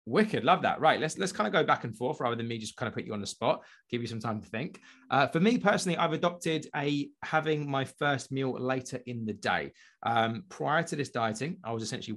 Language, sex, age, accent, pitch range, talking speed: English, male, 20-39, British, 115-140 Hz, 255 wpm